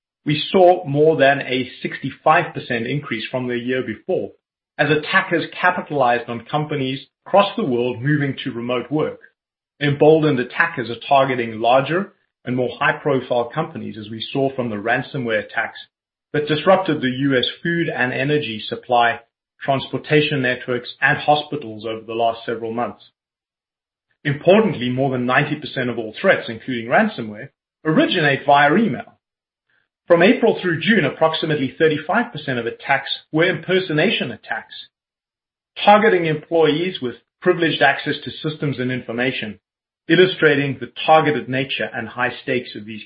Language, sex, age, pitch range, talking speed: English, male, 30-49, 125-160 Hz, 135 wpm